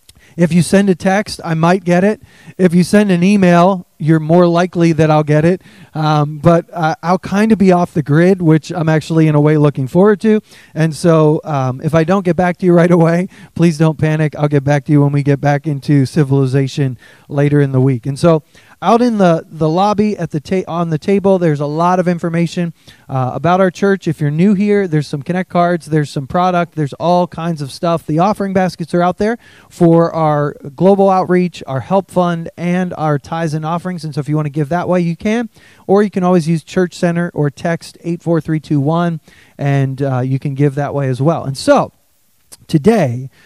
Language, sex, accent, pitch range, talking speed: English, male, American, 150-185 Hz, 220 wpm